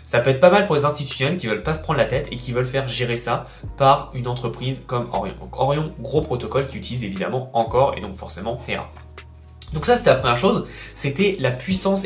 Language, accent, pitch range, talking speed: French, French, 115-150 Hz, 235 wpm